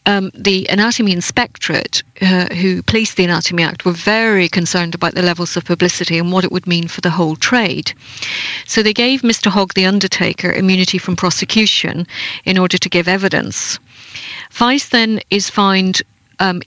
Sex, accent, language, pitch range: female, British, English, 175-205 Hz